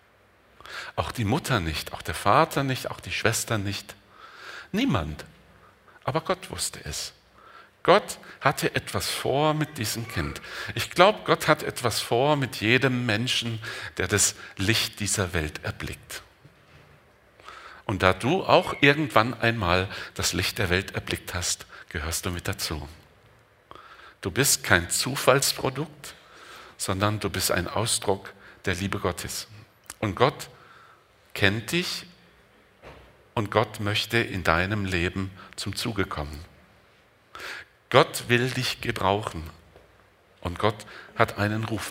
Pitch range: 95-120 Hz